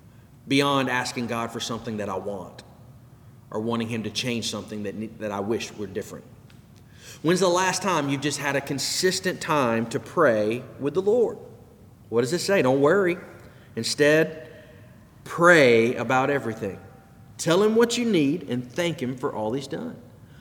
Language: English